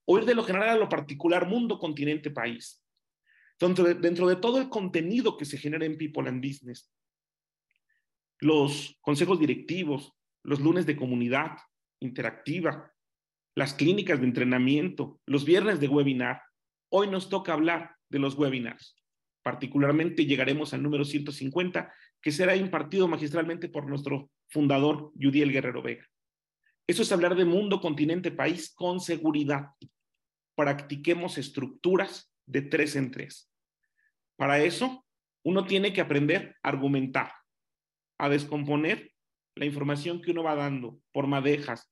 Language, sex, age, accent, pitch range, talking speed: Spanish, male, 40-59, Mexican, 140-180 Hz, 135 wpm